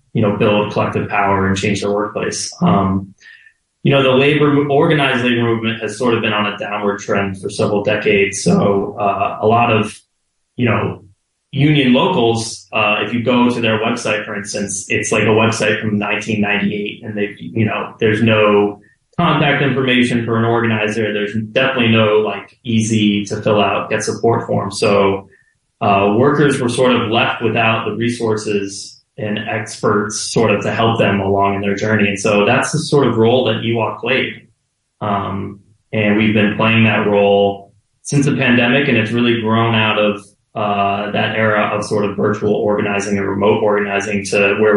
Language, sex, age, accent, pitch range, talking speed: English, male, 20-39, American, 105-115 Hz, 180 wpm